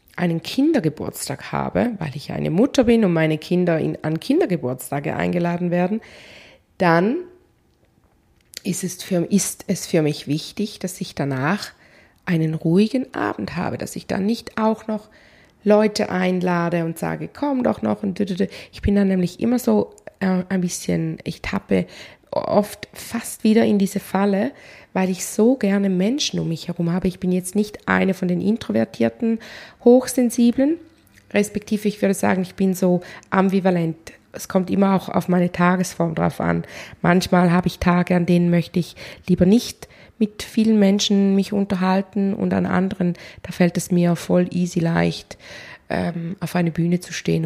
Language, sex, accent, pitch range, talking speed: German, female, German, 170-205 Hz, 160 wpm